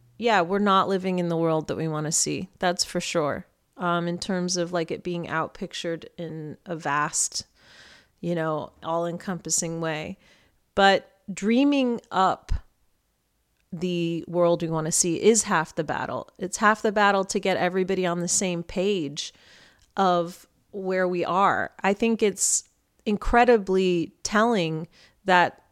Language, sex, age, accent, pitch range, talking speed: English, female, 30-49, American, 170-205 Hz, 150 wpm